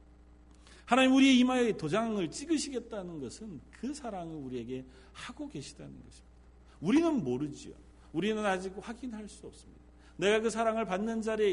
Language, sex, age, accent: Korean, male, 40-59, native